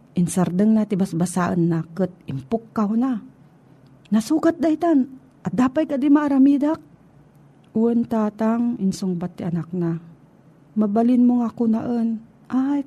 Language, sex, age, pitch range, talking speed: Filipino, female, 40-59, 165-225 Hz, 120 wpm